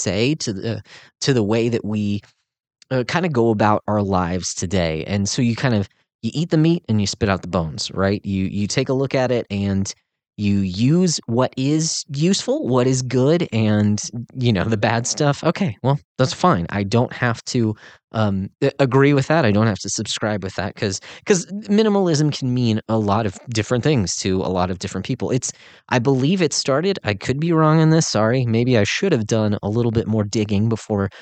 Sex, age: male, 20-39